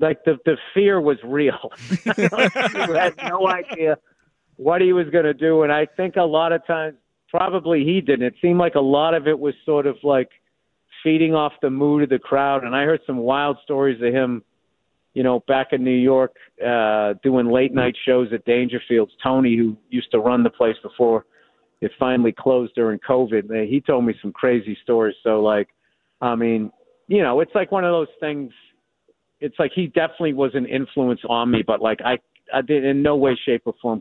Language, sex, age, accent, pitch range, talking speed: English, male, 50-69, American, 120-150 Hz, 205 wpm